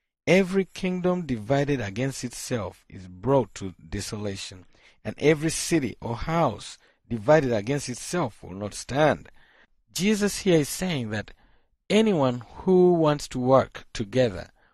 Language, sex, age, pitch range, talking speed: English, male, 50-69, 115-165 Hz, 125 wpm